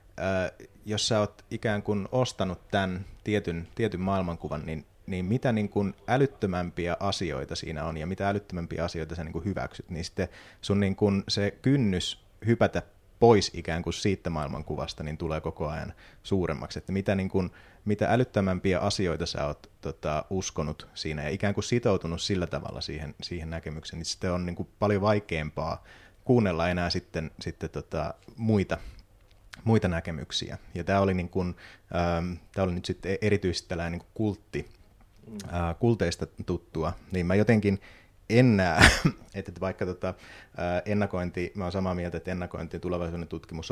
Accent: native